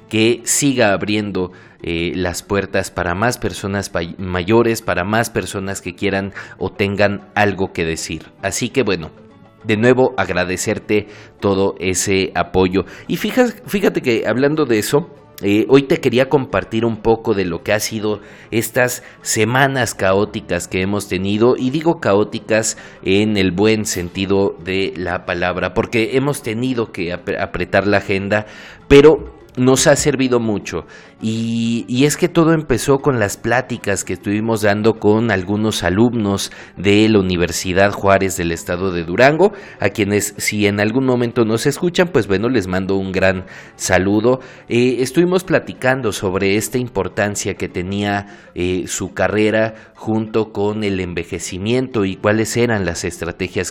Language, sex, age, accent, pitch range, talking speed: Spanish, male, 40-59, Mexican, 95-115 Hz, 150 wpm